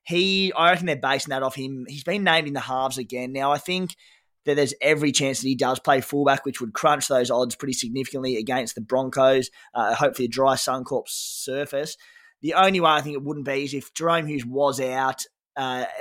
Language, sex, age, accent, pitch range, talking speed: English, male, 20-39, Australian, 130-170 Hz, 215 wpm